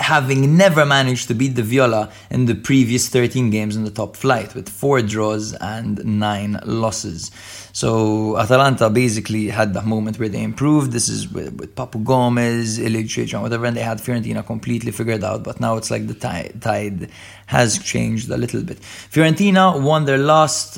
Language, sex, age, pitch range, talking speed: English, male, 20-39, 110-135 Hz, 180 wpm